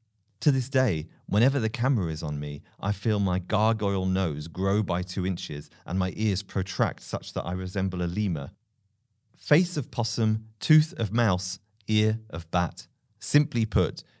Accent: British